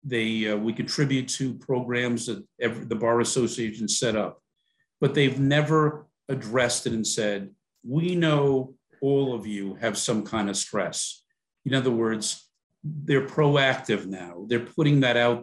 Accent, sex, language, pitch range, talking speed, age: American, male, English, 115-140 Hz, 155 wpm, 50-69